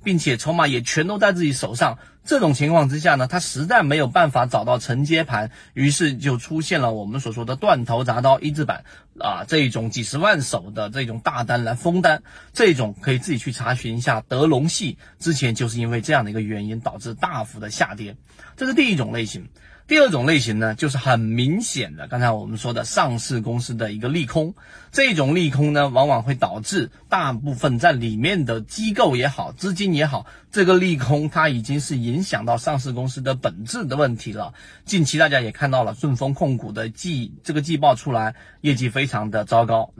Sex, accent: male, native